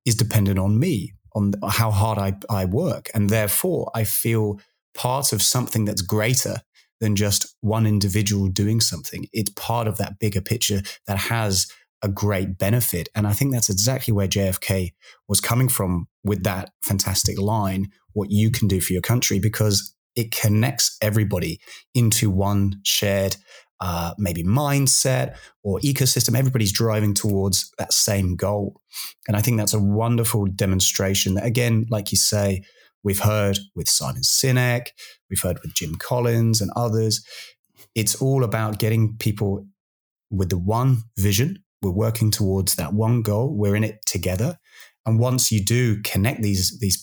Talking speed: 165 wpm